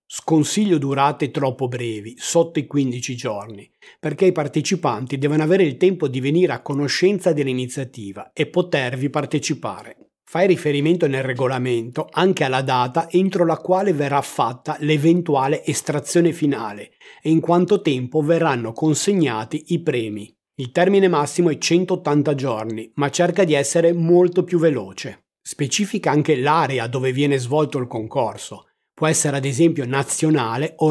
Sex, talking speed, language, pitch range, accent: male, 140 wpm, Italian, 140-175 Hz, native